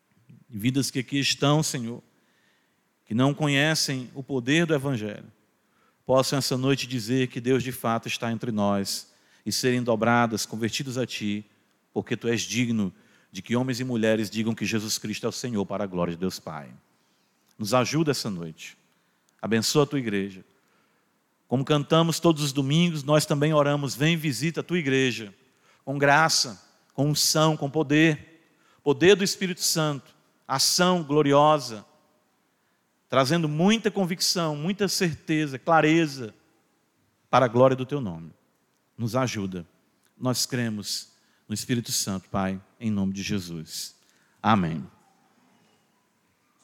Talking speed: 140 wpm